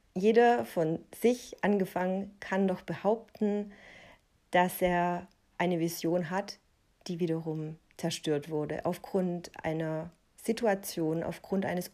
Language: German